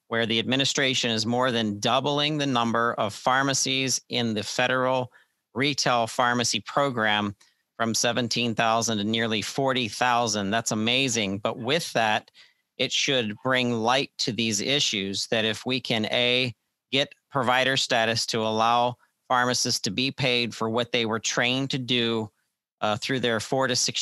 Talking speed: 150 wpm